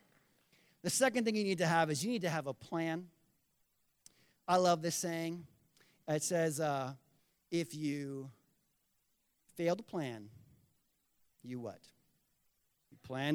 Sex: male